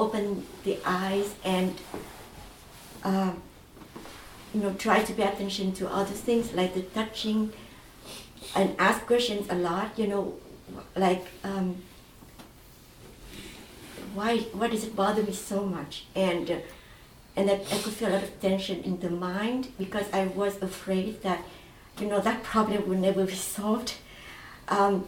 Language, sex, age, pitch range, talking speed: English, female, 60-79, 190-220 Hz, 150 wpm